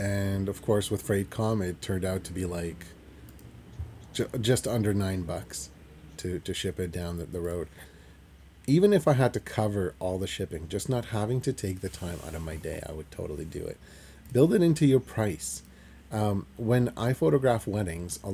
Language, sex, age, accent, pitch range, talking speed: English, male, 30-49, American, 85-115 Hz, 190 wpm